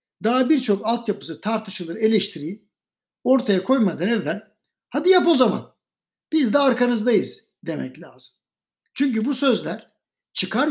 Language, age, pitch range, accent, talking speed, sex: Turkish, 60-79, 190-250 Hz, native, 120 wpm, male